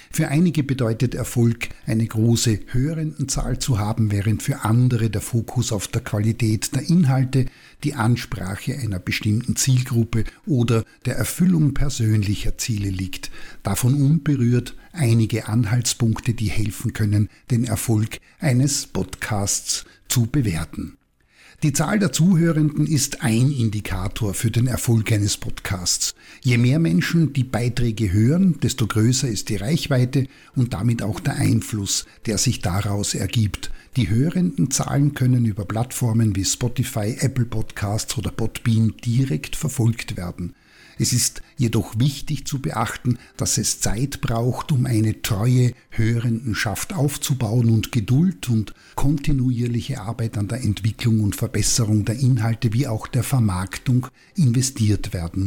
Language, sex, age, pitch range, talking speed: German, male, 50-69, 110-135 Hz, 135 wpm